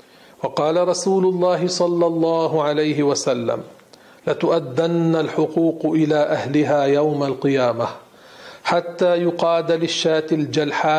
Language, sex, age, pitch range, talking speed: Arabic, male, 40-59, 150-170 Hz, 95 wpm